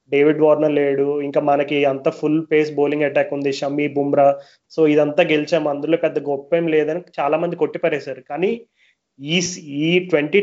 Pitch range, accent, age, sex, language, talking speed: 145-170 Hz, native, 30-49, male, Telugu, 160 wpm